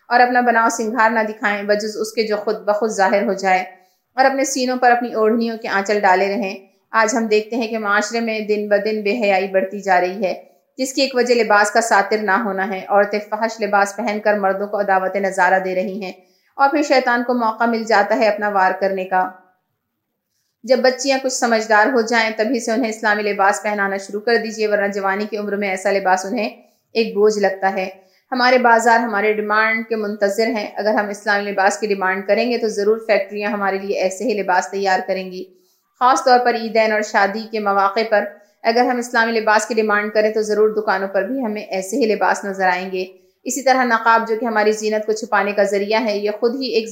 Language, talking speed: Urdu, 220 wpm